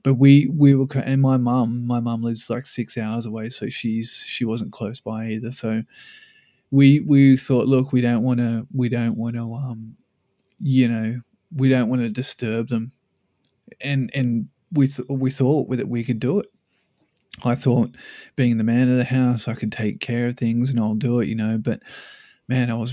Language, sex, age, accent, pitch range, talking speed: English, male, 20-39, Australian, 115-130 Hz, 205 wpm